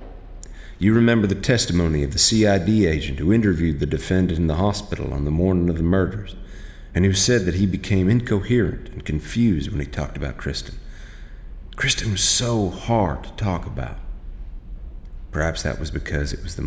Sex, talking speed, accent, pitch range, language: male, 175 wpm, American, 75-100 Hz, English